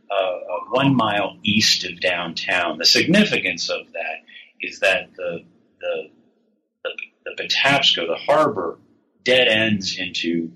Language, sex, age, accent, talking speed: English, male, 40-59, American, 130 wpm